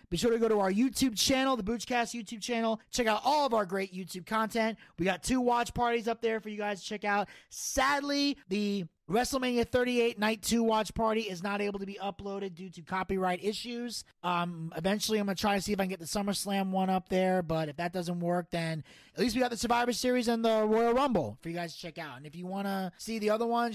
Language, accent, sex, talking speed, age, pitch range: English, American, male, 255 wpm, 30-49, 180-235 Hz